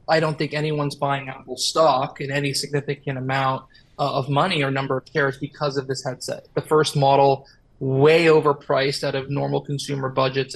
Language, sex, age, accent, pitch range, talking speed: English, male, 20-39, American, 135-145 Hz, 180 wpm